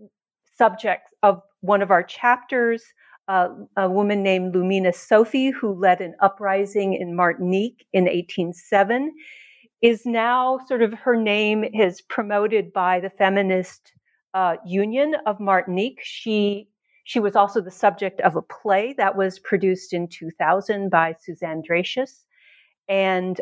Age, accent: 50-69, American